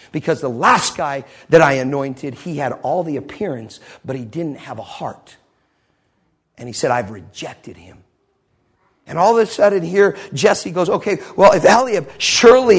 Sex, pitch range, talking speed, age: male, 165-230 Hz, 175 wpm, 50-69